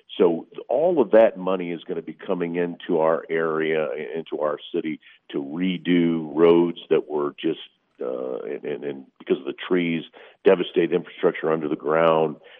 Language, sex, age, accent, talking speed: English, male, 50-69, American, 165 wpm